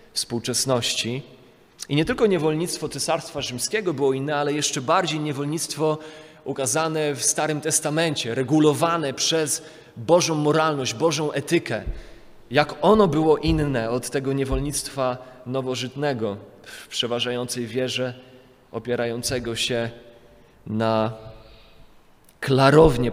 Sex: male